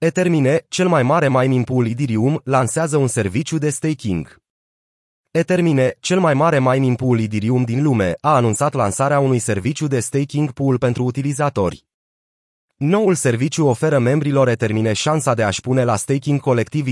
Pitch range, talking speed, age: 120-150 Hz, 155 wpm, 30-49